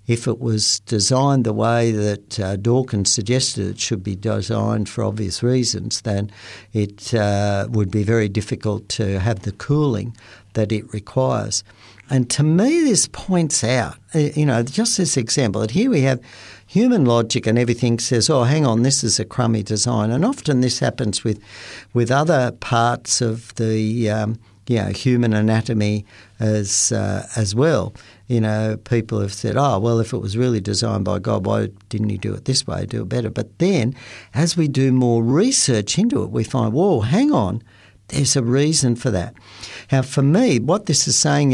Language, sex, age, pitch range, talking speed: English, male, 60-79, 105-125 Hz, 185 wpm